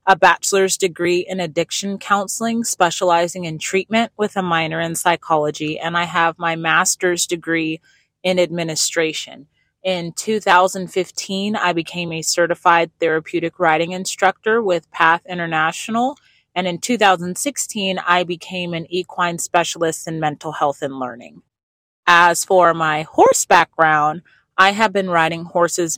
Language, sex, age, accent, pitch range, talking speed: English, female, 30-49, American, 160-180 Hz, 130 wpm